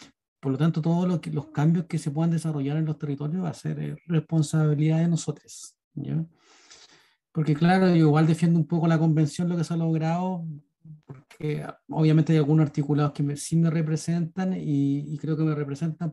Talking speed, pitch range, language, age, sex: 185 wpm, 145-170 Hz, Spanish, 40-59, male